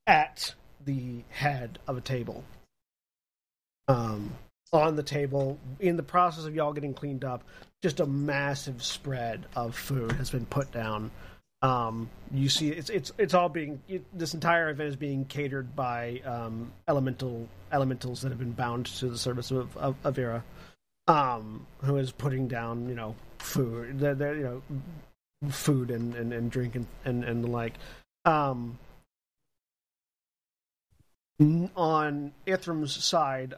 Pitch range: 120-145 Hz